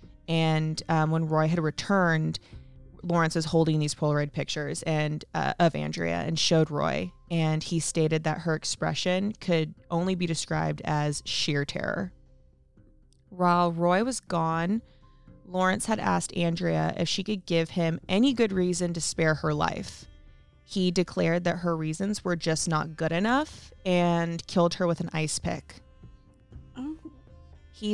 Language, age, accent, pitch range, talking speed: English, 20-39, American, 150-180 Hz, 150 wpm